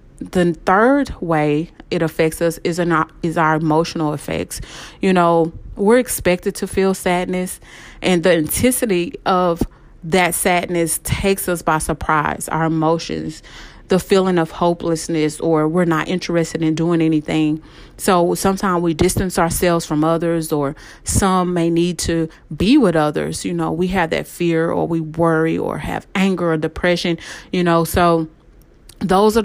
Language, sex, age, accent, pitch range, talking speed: English, female, 30-49, American, 160-180 Hz, 155 wpm